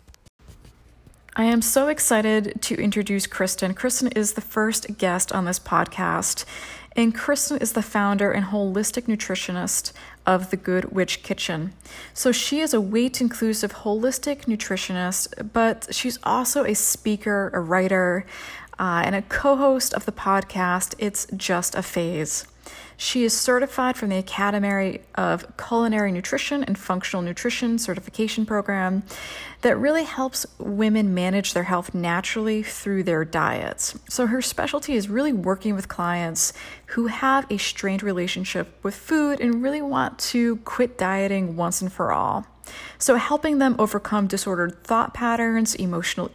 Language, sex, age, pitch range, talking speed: English, female, 30-49, 190-235 Hz, 145 wpm